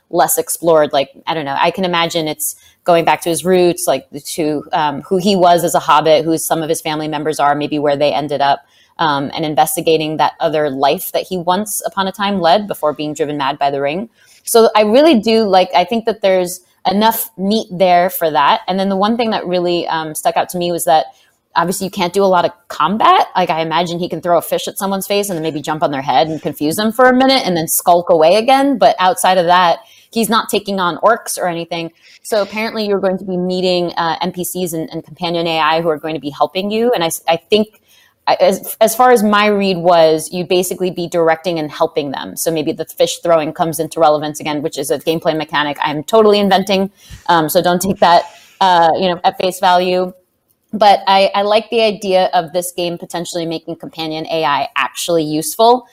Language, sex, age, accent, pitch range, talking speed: English, female, 20-39, American, 160-195 Hz, 230 wpm